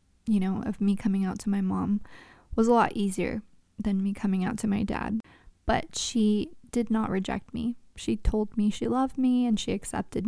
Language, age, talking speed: English, 20-39, 205 wpm